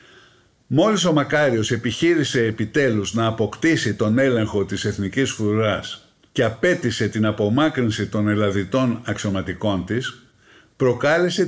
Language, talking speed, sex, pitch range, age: Greek, 110 wpm, male, 110-155 Hz, 60-79